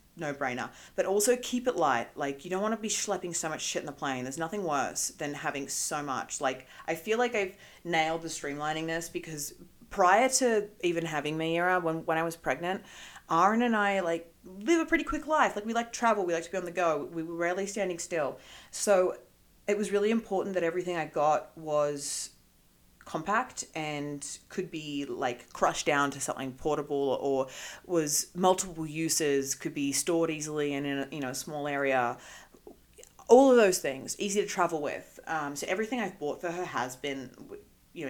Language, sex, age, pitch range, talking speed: English, female, 30-49, 140-185 Hz, 200 wpm